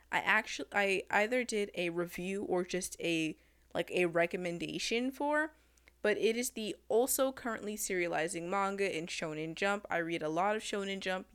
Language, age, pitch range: English, 20-39, 175-220 Hz